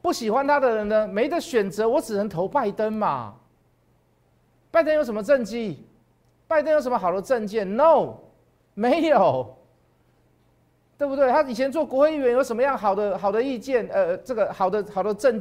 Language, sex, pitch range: Chinese, male, 190-265 Hz